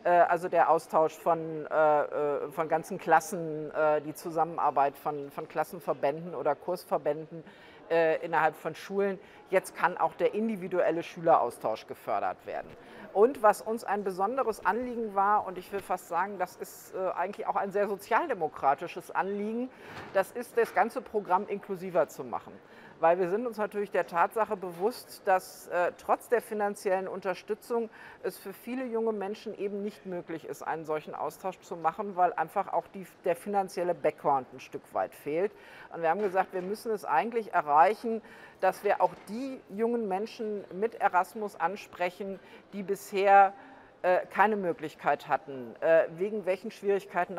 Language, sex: English, female